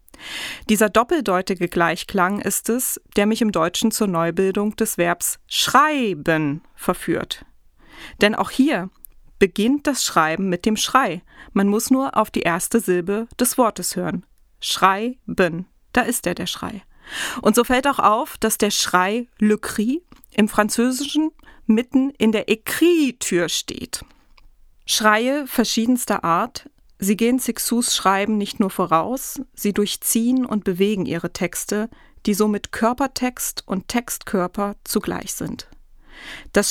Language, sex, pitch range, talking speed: German, female, 185-240 Hz, 130 wpm